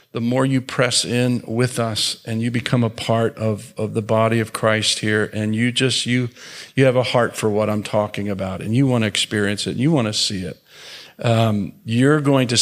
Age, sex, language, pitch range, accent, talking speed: 50-69, male, English, 110-140 Hz, American, 225 wpm